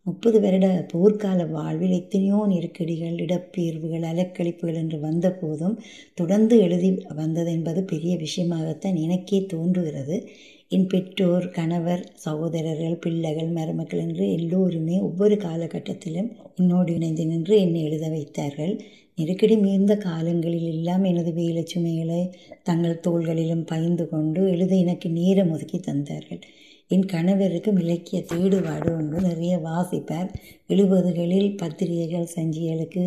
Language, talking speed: Tamil, 105 wpm